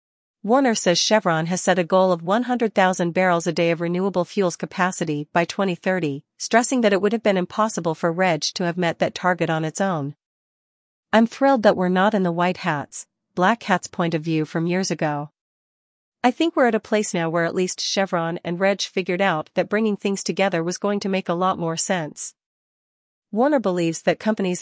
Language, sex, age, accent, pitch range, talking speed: English, female, 40-59, American, 170-200 Hz, 200 wpm